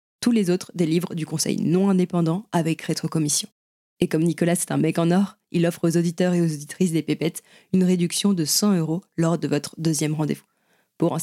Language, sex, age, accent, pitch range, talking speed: French, female, 20-39, French, 155-185 Hz, 215 wpm